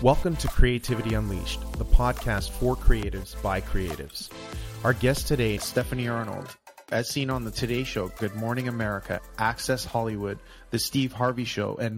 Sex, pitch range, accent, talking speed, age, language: male, 110-125 Hz, American, 160 wpm, 30-49, English